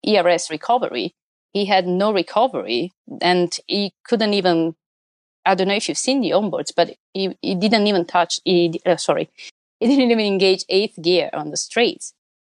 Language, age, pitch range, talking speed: Greek, 30-49, 170-240 Hz, 175 wpm